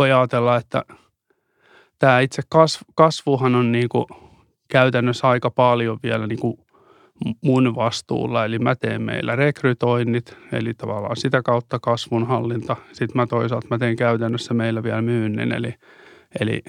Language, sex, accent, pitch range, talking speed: Finnish, male, native, 115-125 Hz, 130 wpm